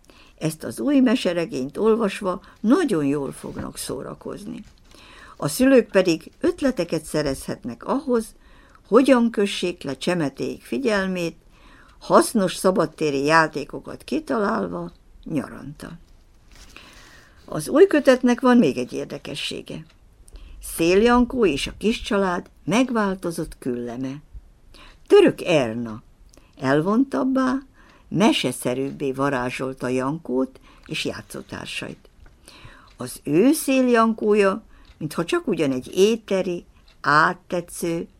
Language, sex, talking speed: Hungarian, female, 90 wpm